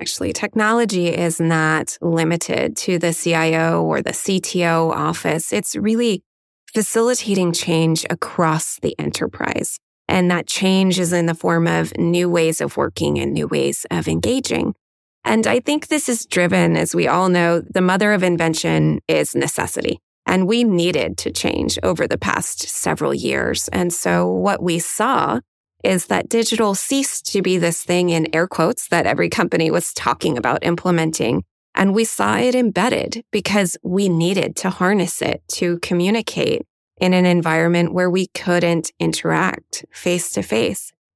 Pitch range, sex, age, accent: 160-205 Hz, female, 20-39, American